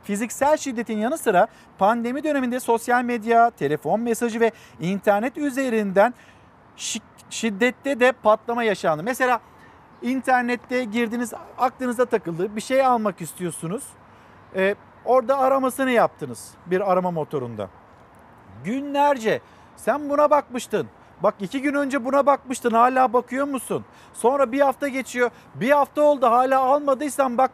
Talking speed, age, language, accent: 120 wpm, 50-69, Turkish, native